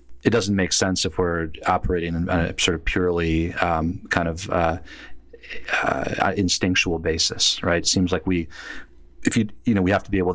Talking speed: 190 wpm